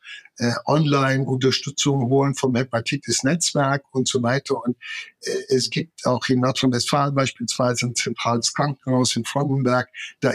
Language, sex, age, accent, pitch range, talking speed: English, male, 60-79, German, 125-150 Hz, 135 wpm